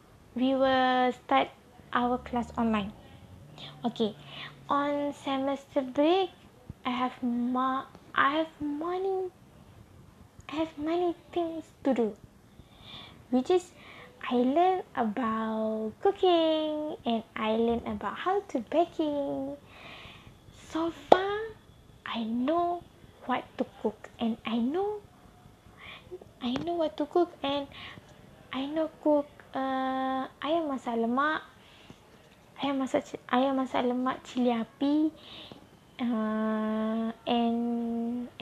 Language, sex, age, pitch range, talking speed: English, female, 20-39, 240-310 Hz, 100 wpm